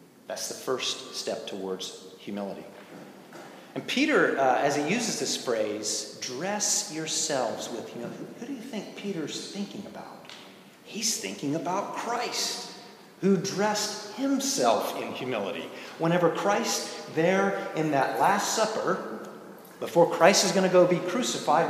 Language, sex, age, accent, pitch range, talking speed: English, male, 40-59, American, 125-210 Hz, 135 wpm